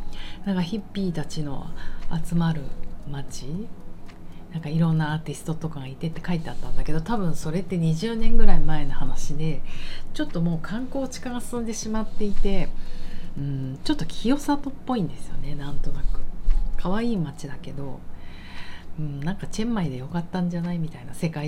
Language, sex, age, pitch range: Japanese, female, 40-59, 145-185 Hz